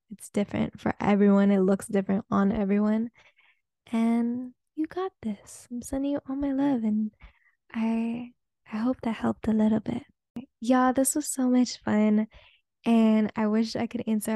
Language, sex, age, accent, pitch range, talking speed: English, female, 10-29, American, 205-245 Hz, 165 wpm